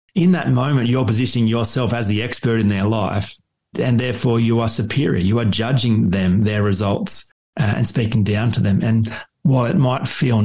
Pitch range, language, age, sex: 105-125 Hz, English, 30-49, male